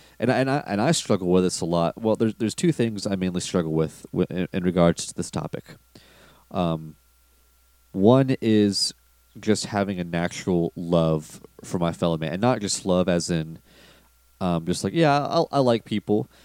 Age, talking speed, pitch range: 30-49, 195 wpm, 85-110 Hz